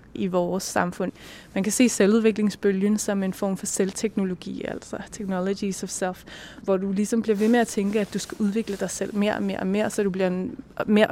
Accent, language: native, Danish